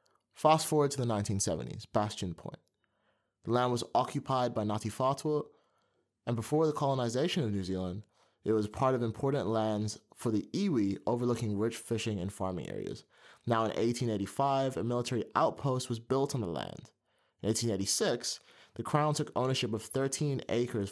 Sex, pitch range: male, 105-130 Hz